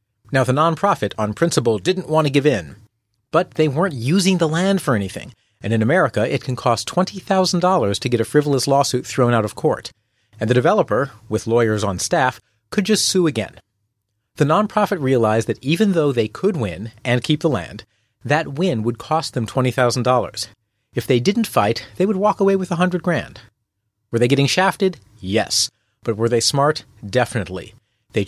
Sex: male